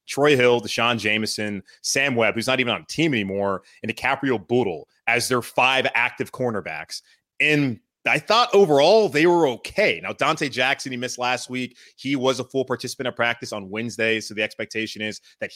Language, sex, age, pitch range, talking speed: English, male, 20-39, 115-140 Hz, 190 wpm